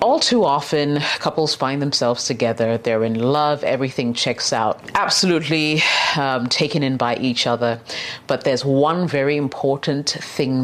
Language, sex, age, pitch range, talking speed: English, female, 30-49, 125-155 Hz, 145 wpm